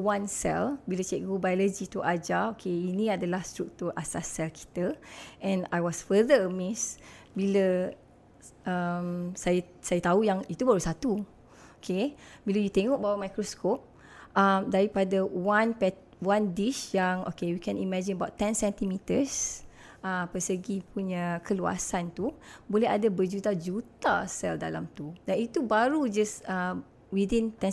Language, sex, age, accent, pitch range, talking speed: English, female, 20-39, Malaysian, 185-225 Hz, 140 wpm